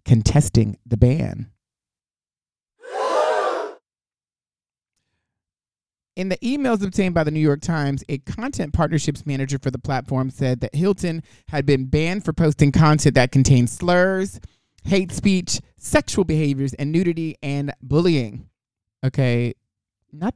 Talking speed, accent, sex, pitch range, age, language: 120 wpm, American, male, 125-160 Hz, 30-49, English